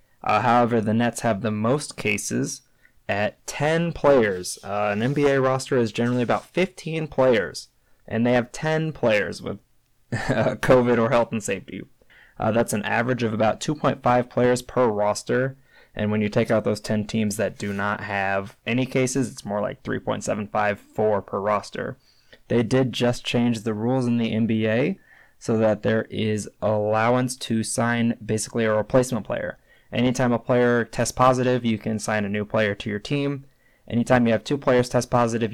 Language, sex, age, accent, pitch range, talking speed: English, male, 20-39, American, 110-125 Hz, 175 wpm